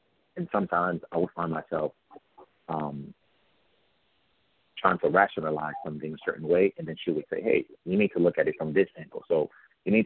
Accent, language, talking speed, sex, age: American, English, 190 wpm, male, 40-59